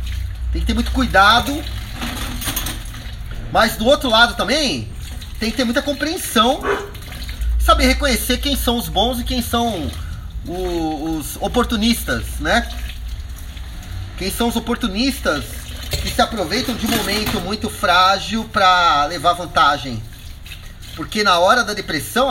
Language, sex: Portuguese, male